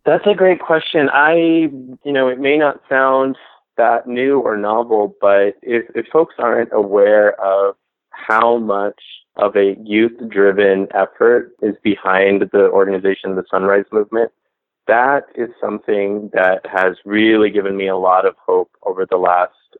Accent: American